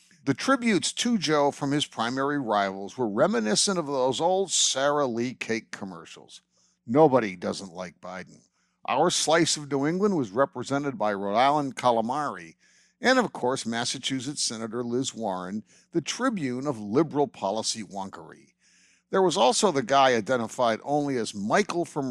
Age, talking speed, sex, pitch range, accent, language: 50-69, 150 wpm, male, 115-170 Hz, American, English